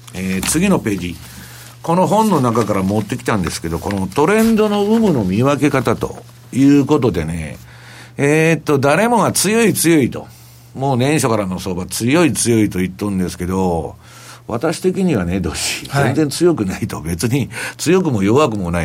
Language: Japanese